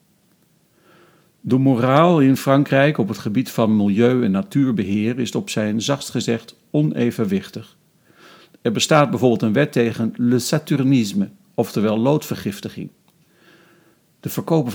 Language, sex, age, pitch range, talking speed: Dutch, male, 50-69, 115-165 Hz, 120 wpm